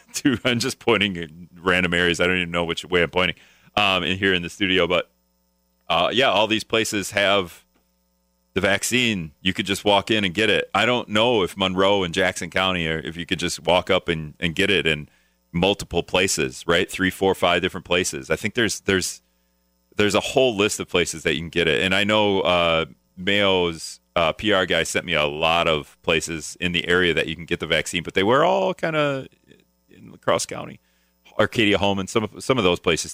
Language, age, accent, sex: English, 30-49, American, male